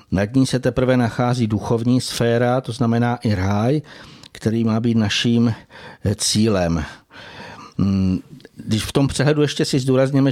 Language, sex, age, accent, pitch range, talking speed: Czech, male, 60-79, native, 110-130 Hz, 135 wpm